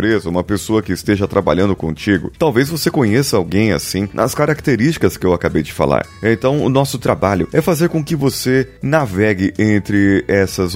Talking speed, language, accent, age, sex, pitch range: 165 wpm, Portuguese, Brazilian, 30-49, male, 90-130 Hz